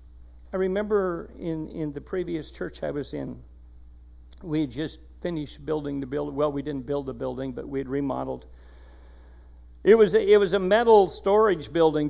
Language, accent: English, American